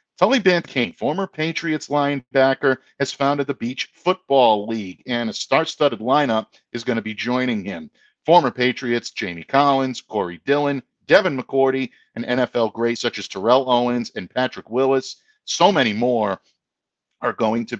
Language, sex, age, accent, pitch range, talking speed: English, male, 50-69, American, 110-145 Hz, 150 wpm